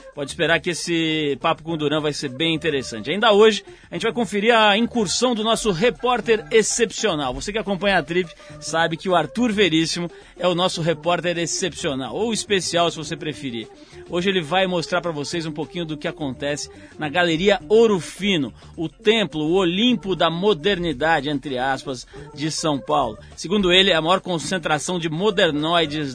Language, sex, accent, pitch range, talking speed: Portuguese, male, Brazilian, 155-200 Hz, 175 wpm